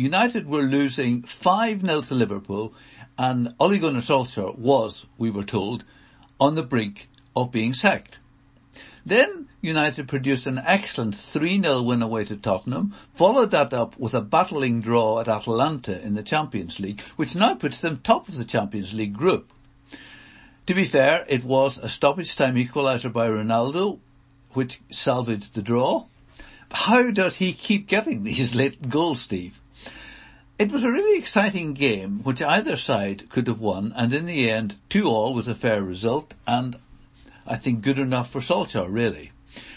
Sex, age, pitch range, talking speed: male, 60-79, 115-145 Hz, 160 wpm